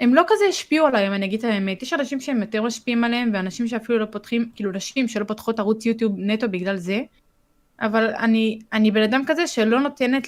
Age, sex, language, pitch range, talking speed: 20-39, female, Hebrew, 210-250 Hz, 210 wpm